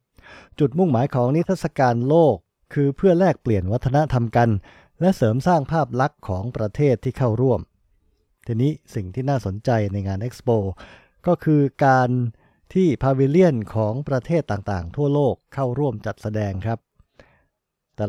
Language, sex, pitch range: Thai, male, 105-140 Hz